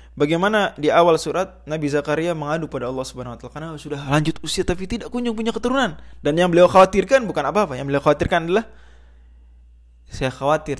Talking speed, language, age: 180 wpm, Indonesian, 20-39